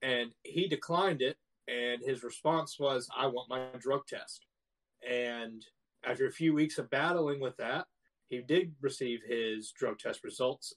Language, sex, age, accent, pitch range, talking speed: English, male, 30-49, American, 115-140 Hz, 160 wpm